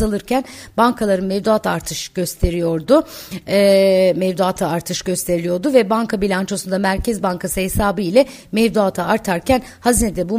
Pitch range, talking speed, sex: 180-230 Hz, 115 wpm, female